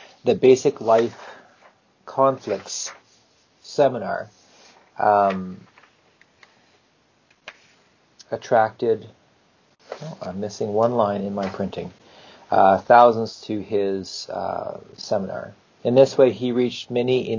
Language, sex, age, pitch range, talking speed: English, male, 40-59, 105-125 Hz, 95 wpm